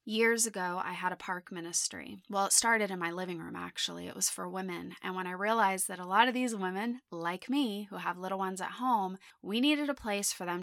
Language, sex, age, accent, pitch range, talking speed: English, female, 20-39, American, 180-220 Hz, 245 wpm